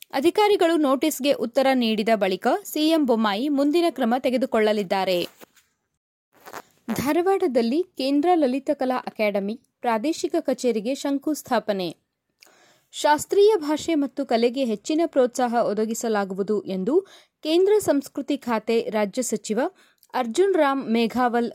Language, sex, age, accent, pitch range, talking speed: Kannada, female, 20-39, native, 225-315 Hz, 95 wpm